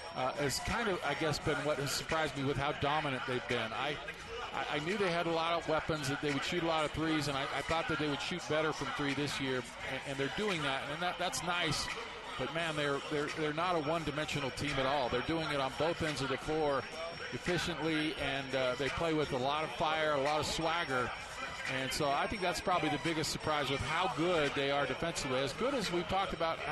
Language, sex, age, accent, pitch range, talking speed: English, male, 50-69, American, 140-165 Hz, 245 wpm